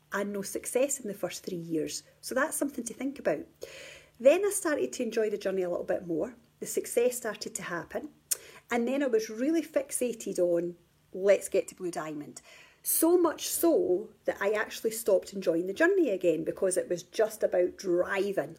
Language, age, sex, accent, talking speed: English, 40-59, female, British, 190 wpm